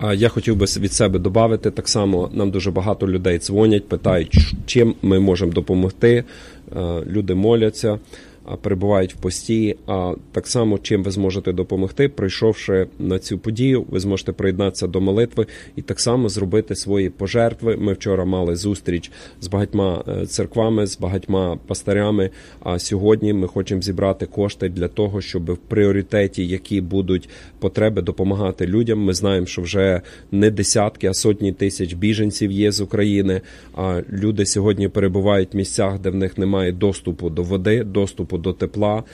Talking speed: 155 wpm